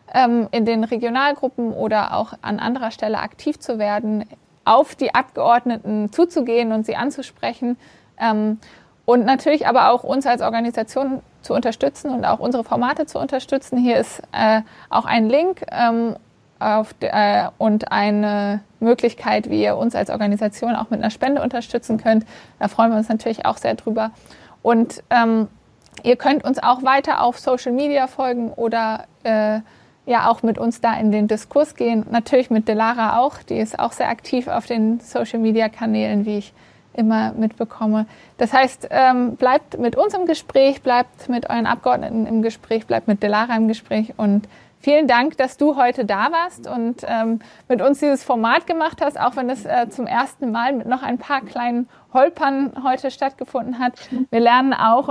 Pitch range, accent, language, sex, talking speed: 220-260 Hz, German, German, female, 170 wpm